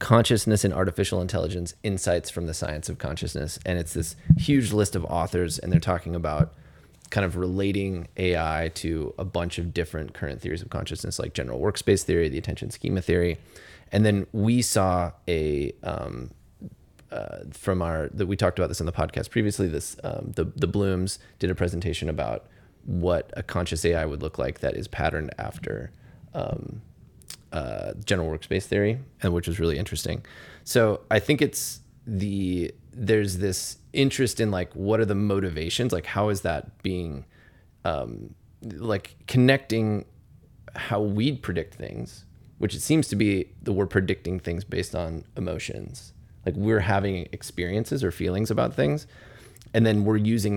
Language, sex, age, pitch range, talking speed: English, male, 30-49, 85-105 Hz, 165 wpm